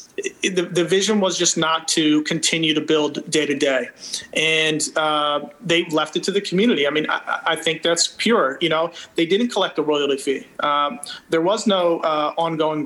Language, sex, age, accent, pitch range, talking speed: English, male, 30-49, American, 155-190 Hz, 195 wpm